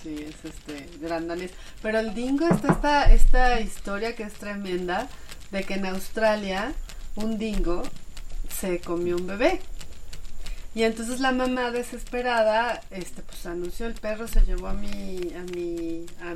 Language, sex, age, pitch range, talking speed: Spanish, female, 30-49, 170-215 Hz, 150 wpm